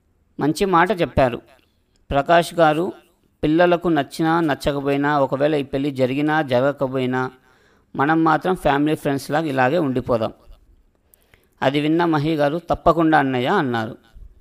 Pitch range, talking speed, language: 130-170 Hz, 110 wpm, Telugu